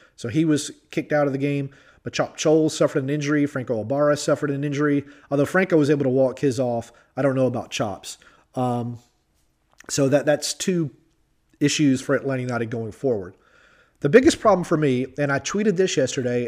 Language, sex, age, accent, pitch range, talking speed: English, male, 30-49, American, 125-150 Hz, 195 wpm